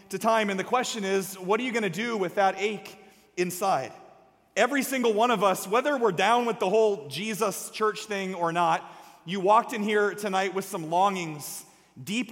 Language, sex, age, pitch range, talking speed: English, male, 30-49, 195-240 Hz, 200 wpm